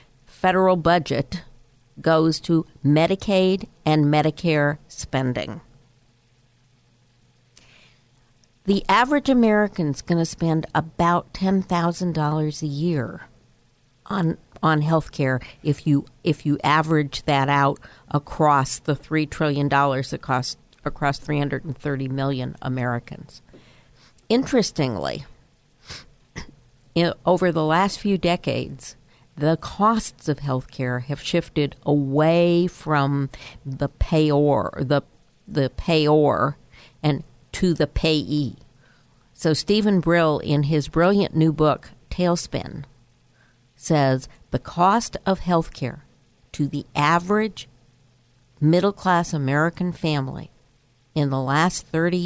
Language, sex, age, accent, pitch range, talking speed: English, female, 50-69, American, 130-170 Hz, 110 wpm